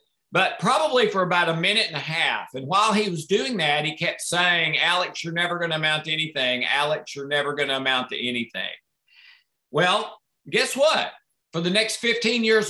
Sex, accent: male, American